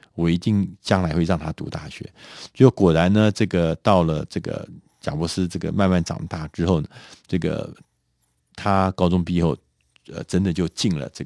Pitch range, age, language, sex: 80-100 Hz, 50-69, Chinese, male